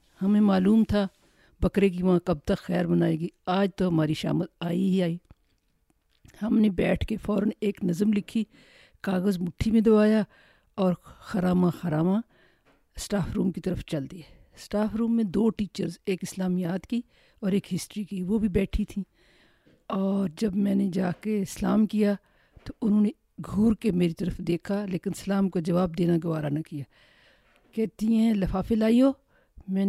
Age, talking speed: 50-69, 170 wpm